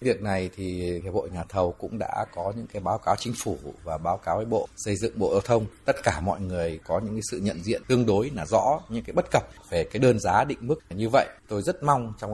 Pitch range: 90-115 Hz